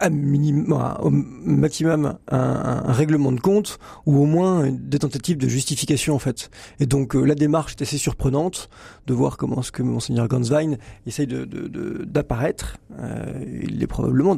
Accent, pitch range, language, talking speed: French, 125-150 Hz, French, 170 wpm